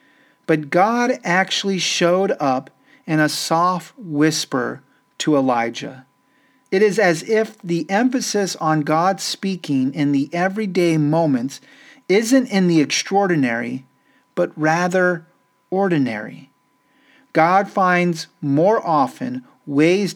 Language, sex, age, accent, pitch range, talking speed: English, male, 40-59, American, 145-195 Hz, 105 wpm